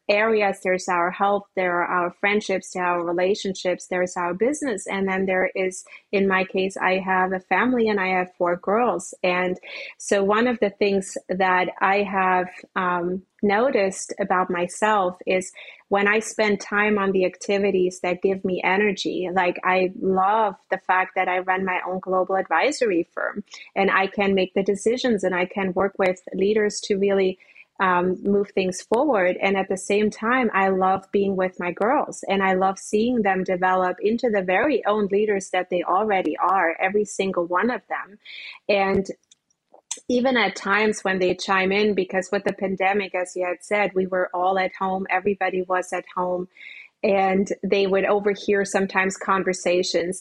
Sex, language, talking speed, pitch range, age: female, English, 180 wpm, 185-205 Hz, 30-49